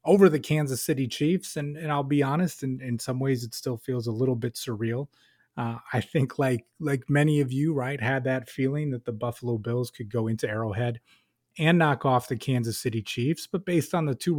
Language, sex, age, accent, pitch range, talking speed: English, male, 30-49, American, 120-155 Hz, 220 wpm